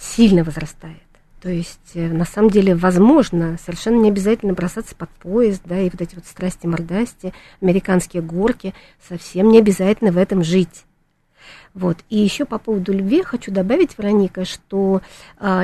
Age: 40-59